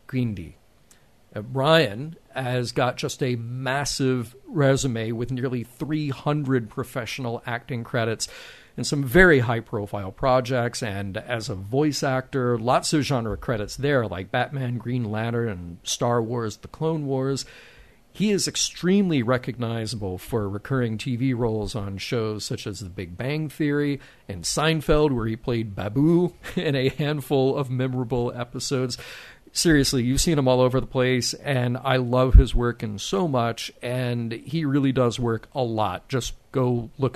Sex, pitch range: male, 120-145 Hz